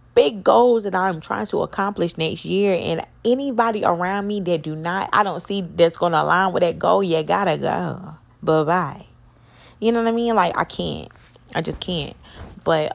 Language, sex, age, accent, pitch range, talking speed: English, female, 20-39, American, 155-215 Hz, 200 wpm